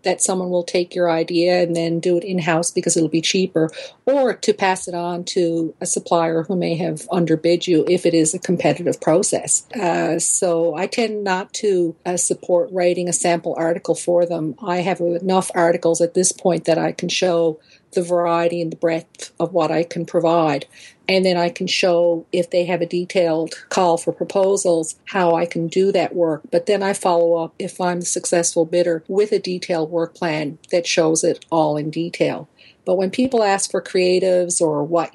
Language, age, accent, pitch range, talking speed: English, 50-69, American, 170-185 Hz, 200 wpm